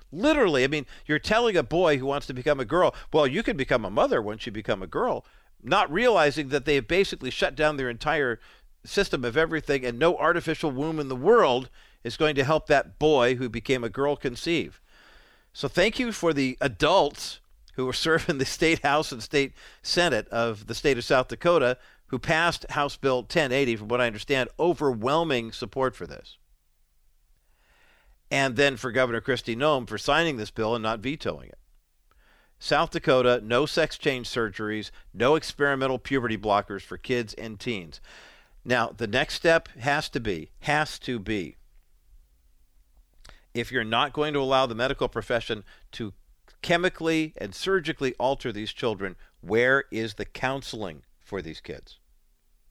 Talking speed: 170 wpm